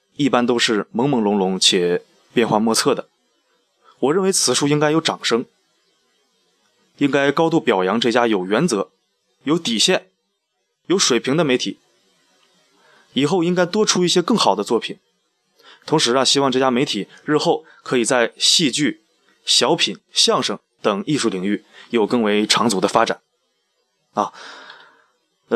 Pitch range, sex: 110-150 Hz, male